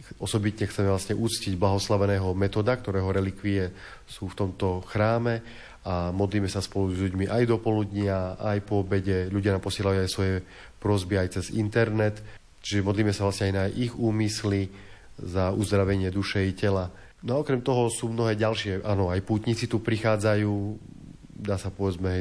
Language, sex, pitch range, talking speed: Slovak, male, 95-110 Hz, 165 wpm